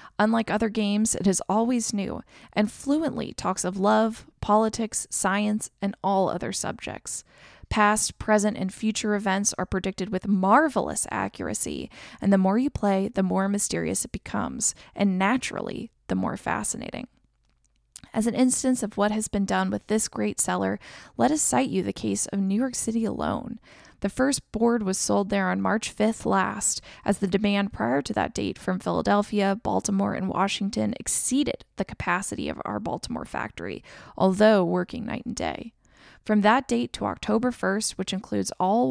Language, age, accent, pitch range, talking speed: English, 20-39, American, 195-225 Hz, 170 wpm